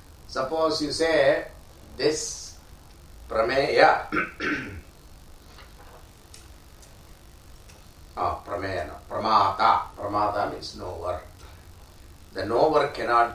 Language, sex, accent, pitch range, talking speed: English, male, Indian, 80-115 Hz, 65 wpm